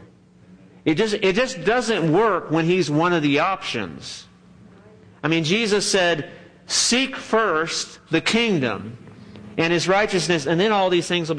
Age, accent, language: 50-69, American, English